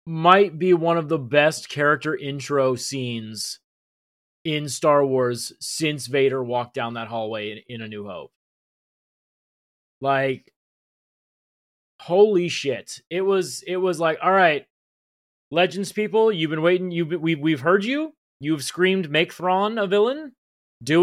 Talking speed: 140 wpm